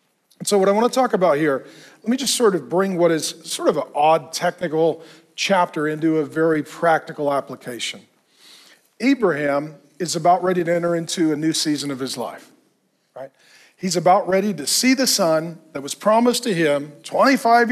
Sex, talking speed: male, 185 wpm